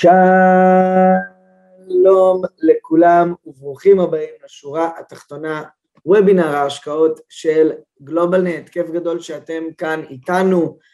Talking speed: 80 wpm